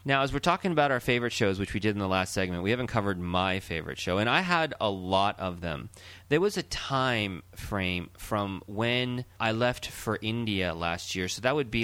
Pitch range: 95-120 Hz